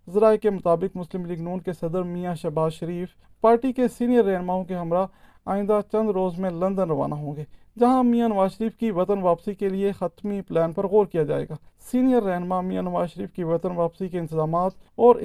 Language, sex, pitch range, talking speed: Urdu, male, 175-210 Hz, 205 wpm